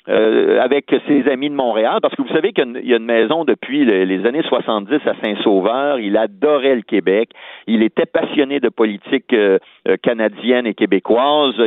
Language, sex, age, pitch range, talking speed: French, male, 50-69, 110-150 Hz, 195 wpm